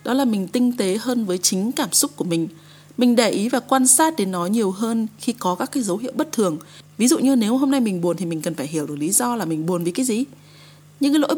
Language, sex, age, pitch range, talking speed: Vietnamese, female, 20-39, 185-255 Hz, 290 wpm